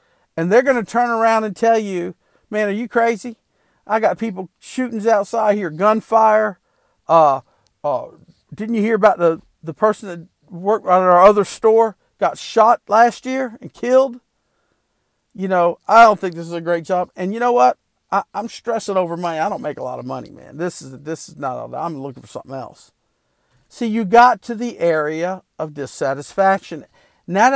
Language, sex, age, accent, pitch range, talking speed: English, male, 50-69, American, 155-225 Hz, 185 wpm